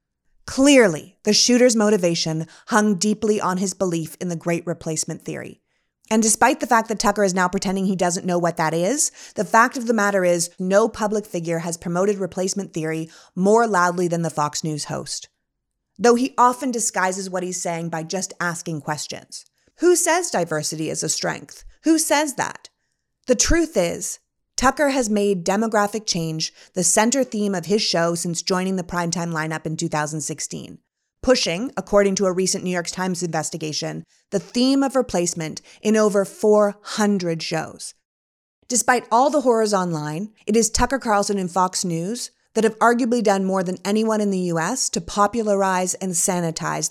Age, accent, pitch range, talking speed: 30-49, American, 170-220 Hz, 170 wpm